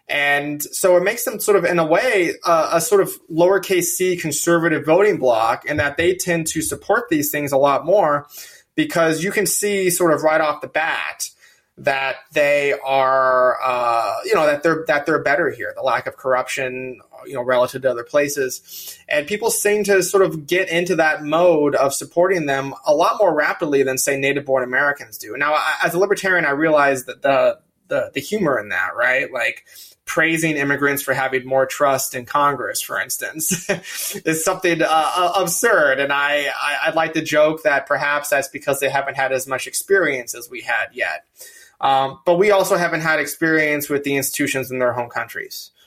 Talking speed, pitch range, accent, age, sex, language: 190 wpm, 140-175 Hz, American, 20-39, male, English